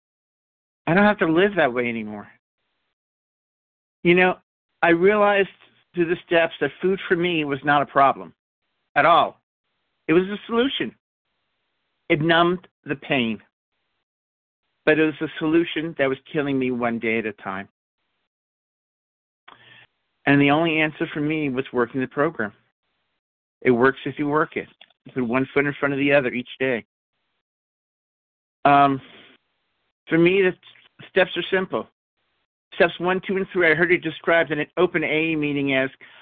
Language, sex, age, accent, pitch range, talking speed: English, male, 50-69, American, 135-175 Hz, 160 wpm